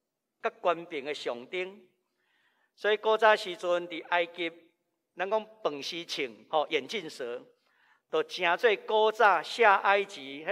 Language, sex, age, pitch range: Chinese, male, 50-69, 180-275 Hz